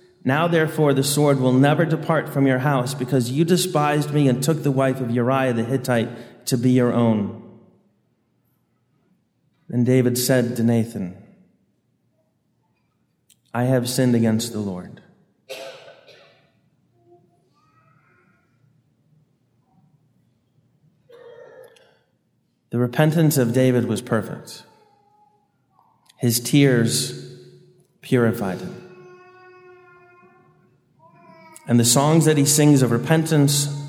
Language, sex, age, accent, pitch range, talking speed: English, male, 30-49, American, 125-185 Hz, 95 wpm